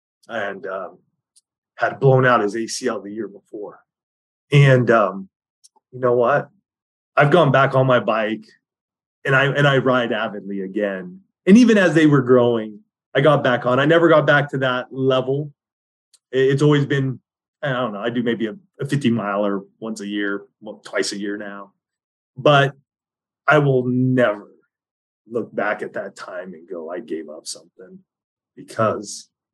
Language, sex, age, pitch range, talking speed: English, male, 30-49, 120-150 Hz, 165 wpm